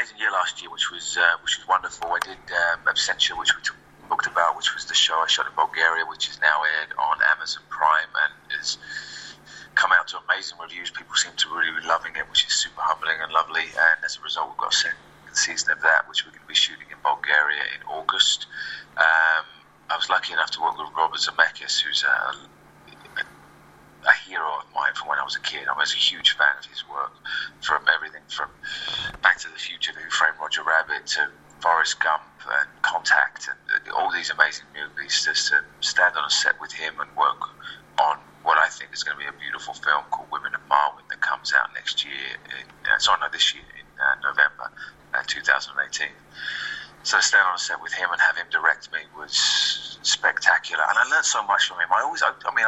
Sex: male